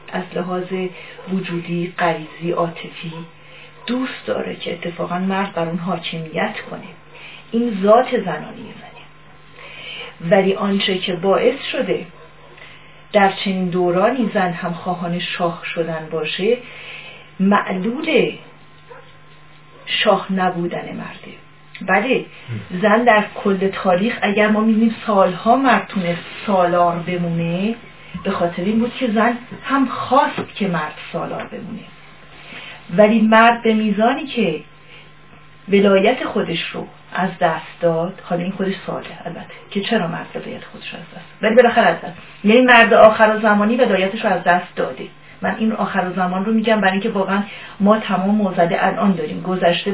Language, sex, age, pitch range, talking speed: Persian, female, 40-59, 175-220 Hz, 135 wpm